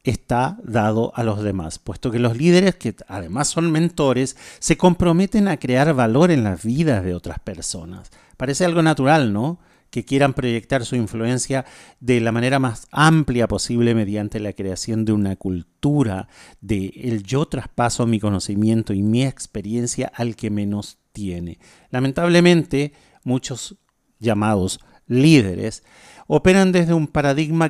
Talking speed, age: 145 wpm, 40-59